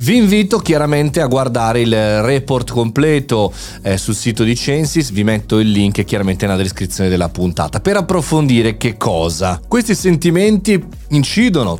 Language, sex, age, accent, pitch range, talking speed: Italian, male, 30-49, native, 100-140 Hz, 145 wpm